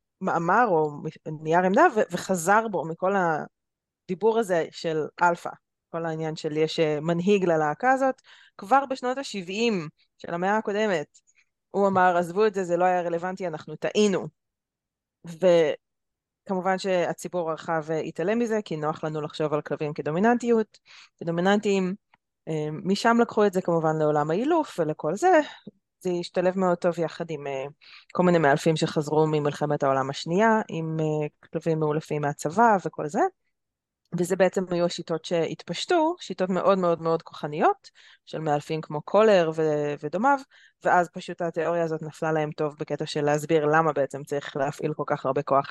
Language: Hebrew